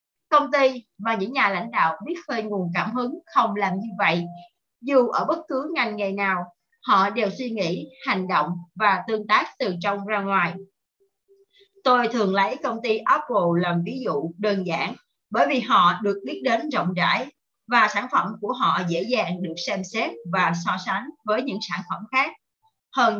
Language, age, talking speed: Vietnamese, 30-49, 190 wpm